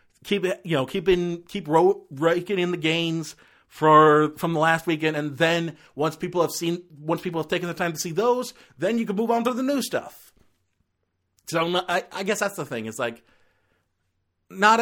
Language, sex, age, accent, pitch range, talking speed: English, male, 40-59, American, 120-165 Hz, 200 wpm